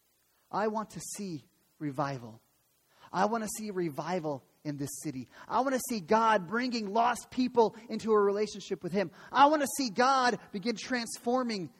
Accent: American